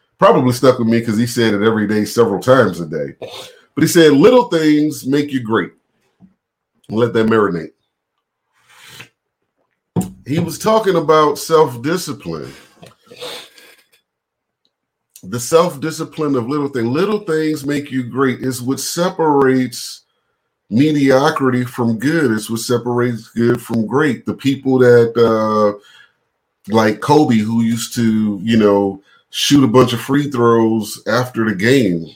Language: English